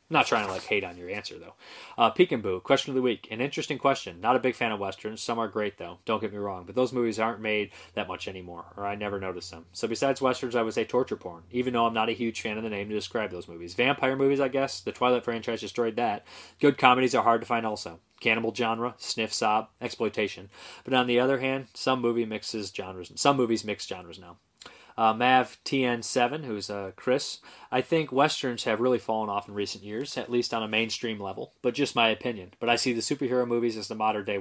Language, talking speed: English, 240 wpm